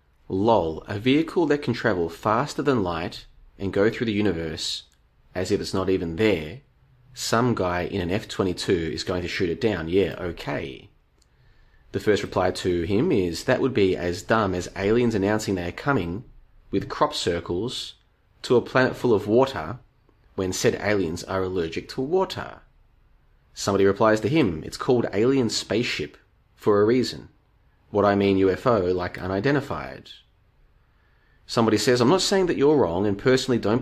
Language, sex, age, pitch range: English, male, 30-49, 90-120 Hz